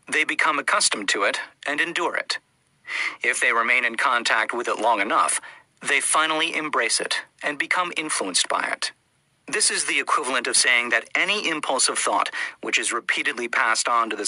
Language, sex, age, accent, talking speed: English, male, 40-59, American, 185 wpm